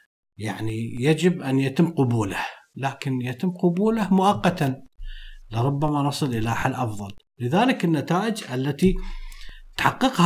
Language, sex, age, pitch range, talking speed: Arabic, male, 50-69, 135-175 Hz, 105 wpm